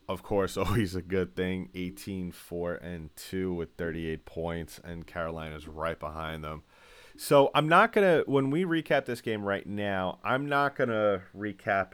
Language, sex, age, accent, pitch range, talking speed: English, male, 30-49, American, 85-100 Hz, 160 wpm